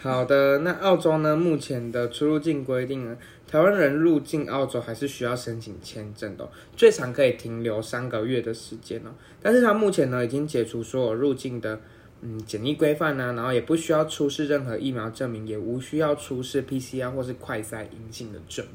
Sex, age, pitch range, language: male, 20-39, 110-140 Hz, Chinese